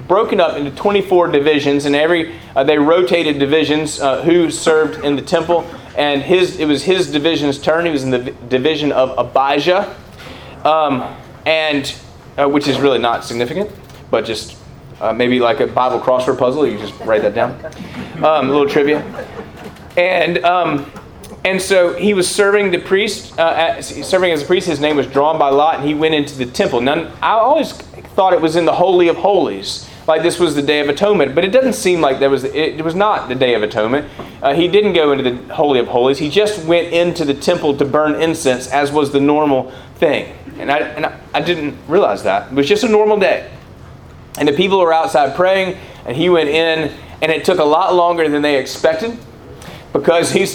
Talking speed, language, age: 210 wpm, English, 30-49